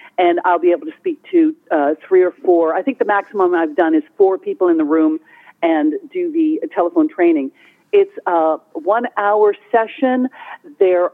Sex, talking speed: female, 180 wpm